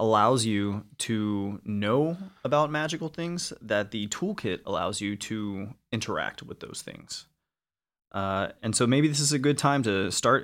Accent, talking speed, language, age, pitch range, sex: American, 160 wpm, English, 20-39, 105-125 Hz, male